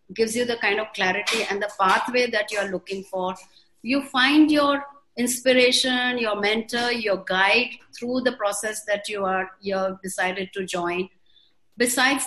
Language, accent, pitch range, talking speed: English, Indian, 200-255 Hz, 160 wpm